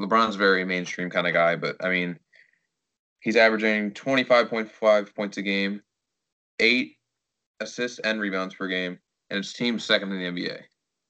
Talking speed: 155 wpm